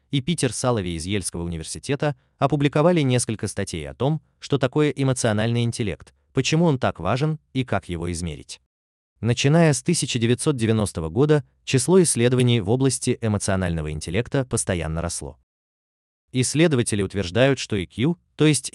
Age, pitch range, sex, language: 30-49, 85-135 Hz, male, Russian